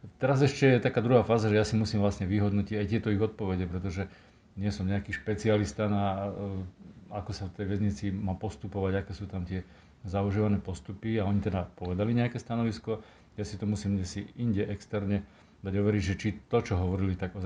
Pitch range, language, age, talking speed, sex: 95-105 Hz, Slovak, 40-59, 190 wpm, male